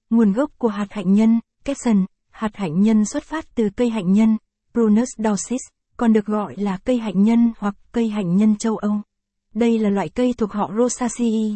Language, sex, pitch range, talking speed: Vietnamese, female, 205-235 Hz, 180 wpm